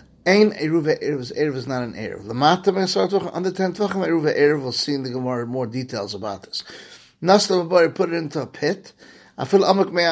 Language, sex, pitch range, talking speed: English, male, 130-175 Hz, 200 wpm